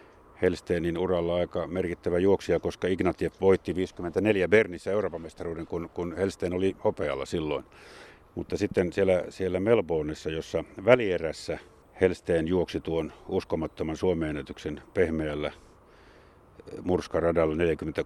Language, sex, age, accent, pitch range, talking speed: Finnish, male, 50-69, native, 85-100 Hz, 105 wpm